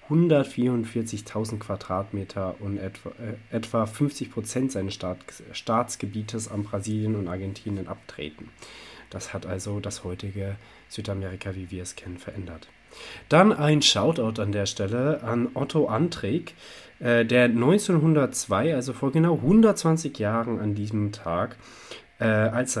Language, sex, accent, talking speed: German, male, German, 115 wpm